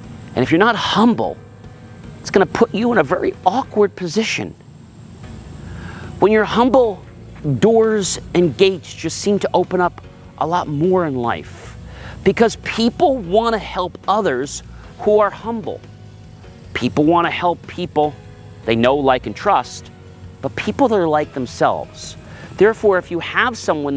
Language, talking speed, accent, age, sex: English, 155 wpm, American, 40-59, male